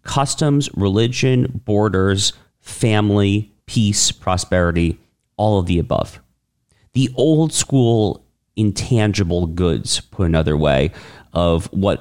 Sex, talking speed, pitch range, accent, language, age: male, 100 wpm, 95-115 Hz, American, English, 40-59